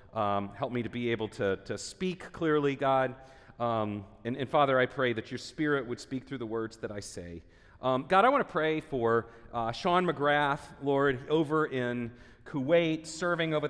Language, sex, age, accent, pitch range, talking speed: English, male, 40-59, American, 120-150 Hz, 195 wpm